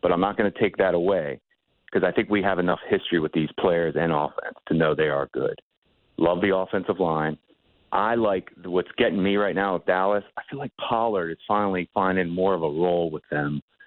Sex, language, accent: male, English, American